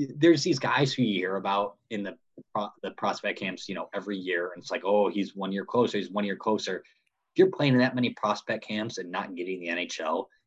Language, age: English, 20-39